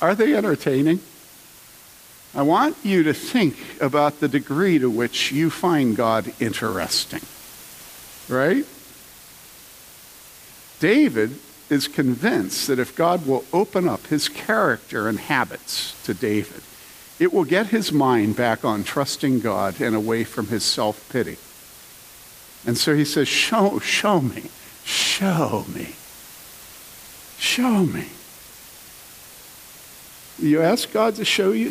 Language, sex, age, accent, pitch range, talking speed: English, male, 60-79, American, 110-170 Hz, 120 wpm